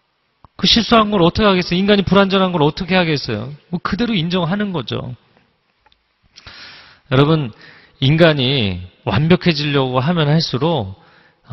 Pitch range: 130-205 Hz